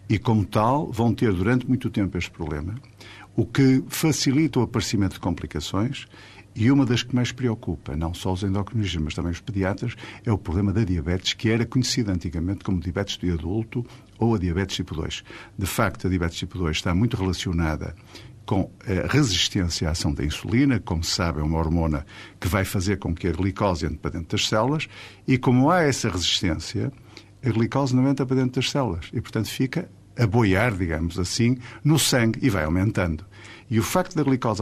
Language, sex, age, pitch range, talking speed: Portuguese, male, 50-69, 95-125 Hz, 195 wpm